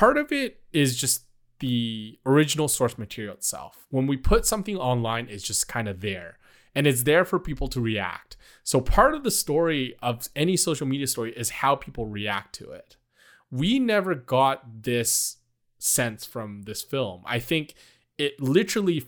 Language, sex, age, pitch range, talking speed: English, male, 20-39, 120-155 Hz, 175 wpm